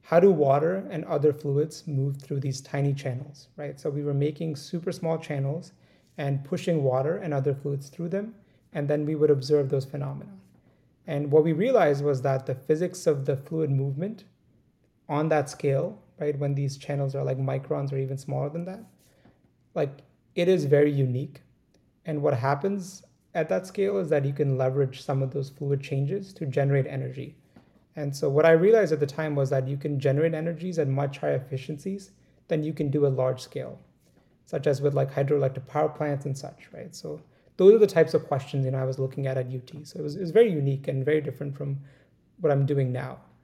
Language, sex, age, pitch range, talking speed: English, male, 30-49, 135-155 Hz, 205 wpm